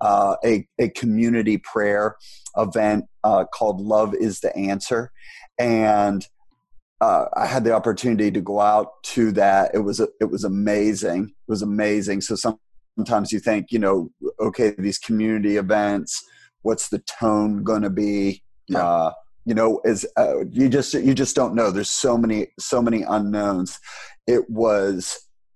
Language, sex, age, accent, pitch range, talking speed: English, male, 30-49, American, 105-115 Hz, 155 wpm